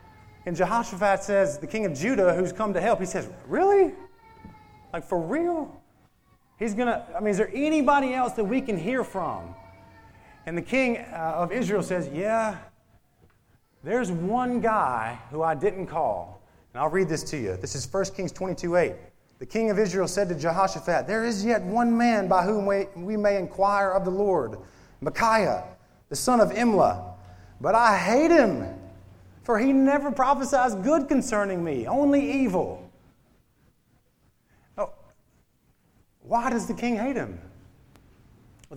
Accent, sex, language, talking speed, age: American, male, English, 160 wpm, 30-49